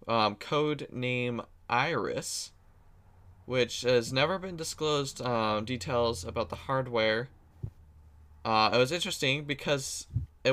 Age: 20-39